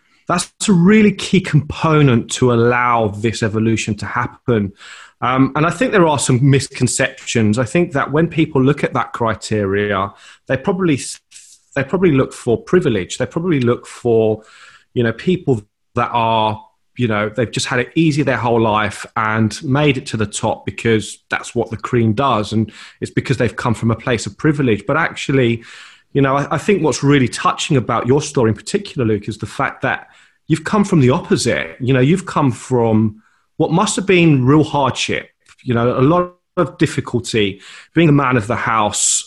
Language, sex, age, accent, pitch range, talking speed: English, male, 30-49, British, 115-160 Hz, 190 wpm